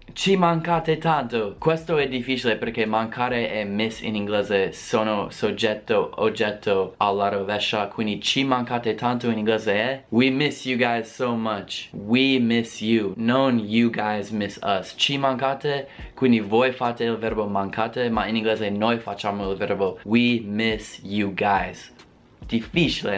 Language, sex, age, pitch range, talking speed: Italian, male, 20-39, 110-130 Hz, 150 wpm